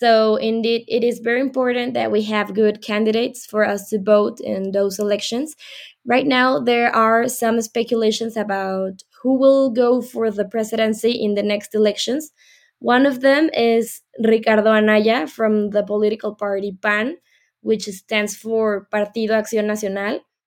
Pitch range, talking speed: 210-235 Hz, 150 wpm